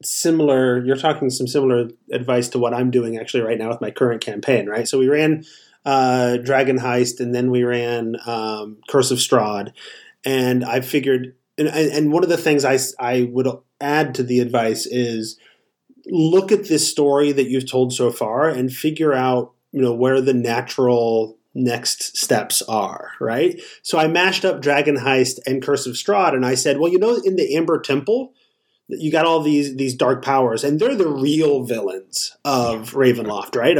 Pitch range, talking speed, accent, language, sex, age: 125-155 Hz, 185 wpm, American, English, male, 30-49